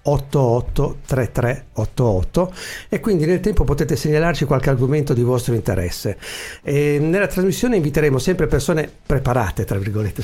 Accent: native